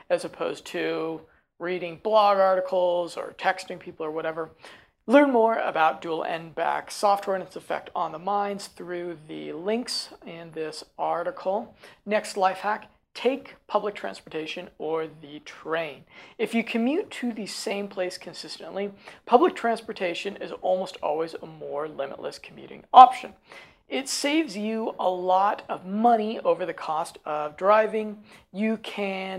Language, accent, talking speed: English, American, 145 wpm